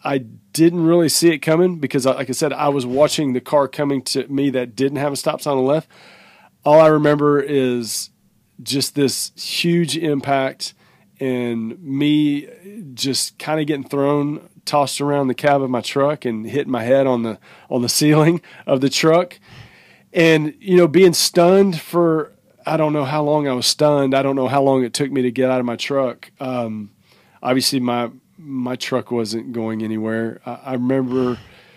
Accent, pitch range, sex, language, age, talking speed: American, 125-150 Hz, male, English, 40-59, 185 wpm